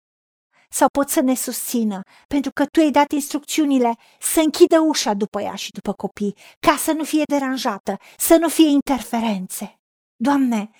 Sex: female